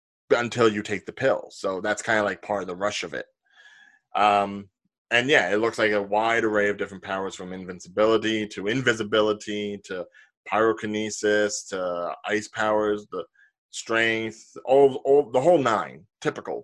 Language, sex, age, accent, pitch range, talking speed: English, male, 20-39, American, 105-155 Hz, 160 wpm